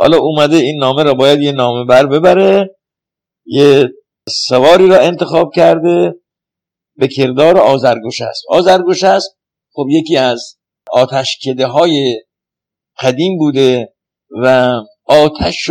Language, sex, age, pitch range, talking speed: Persian, male, 60-79, 130-180 Hz, 120 wpm